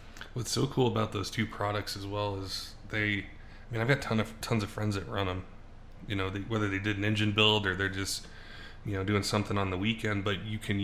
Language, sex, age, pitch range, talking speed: English, male, 20-39, 100-110 Hz, 250 wpm